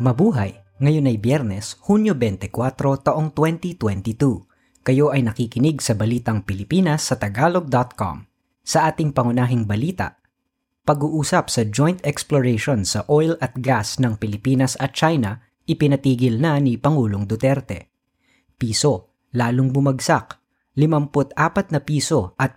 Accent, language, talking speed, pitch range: native, Filipino, 115 wpm, 115-145 Hz